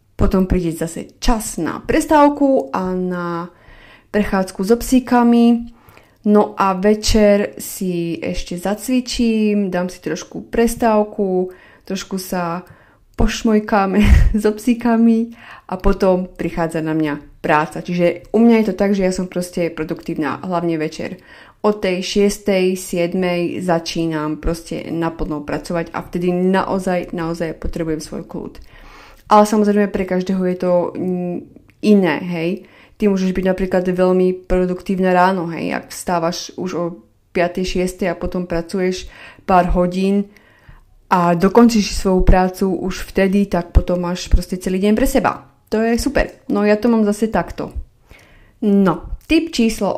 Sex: female